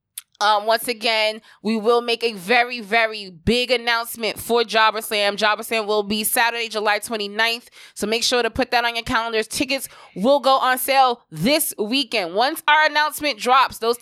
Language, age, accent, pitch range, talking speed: English, 20-39, American, 210-255 Hz, 180 wpm